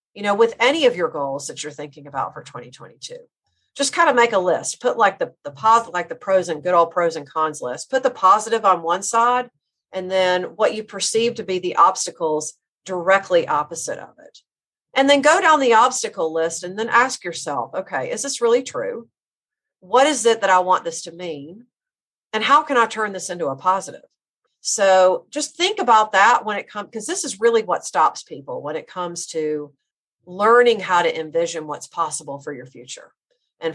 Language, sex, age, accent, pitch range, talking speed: English, female, 40-59, American, 165-235 Hz, 205 wpm